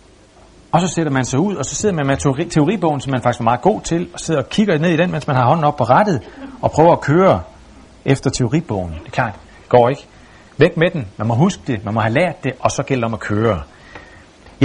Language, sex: Danish, male